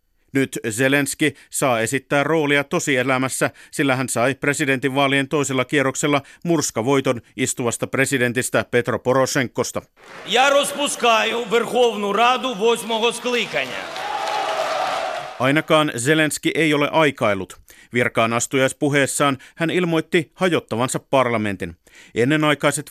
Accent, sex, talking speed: native, male, 80 wpm